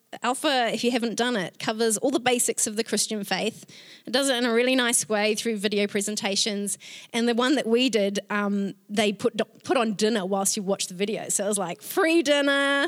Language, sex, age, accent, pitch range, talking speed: English, female, 20-39, Australian, 210-275 Hz, 225 wpm